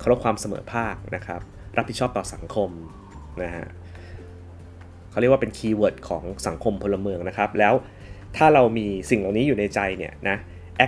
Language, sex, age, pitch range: Thai, male, 20-39, 95-125 Hz